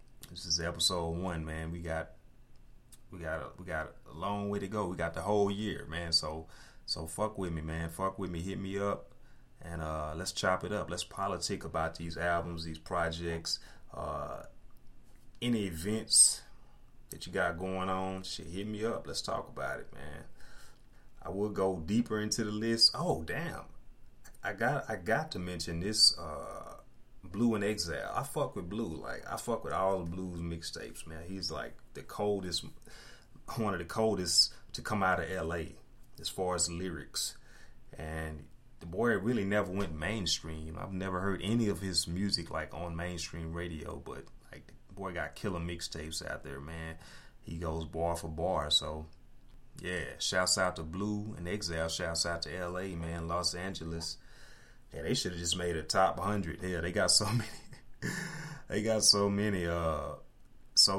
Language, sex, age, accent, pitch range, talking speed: English, male, 30-49, American, 80-100 Hz, 180 wpm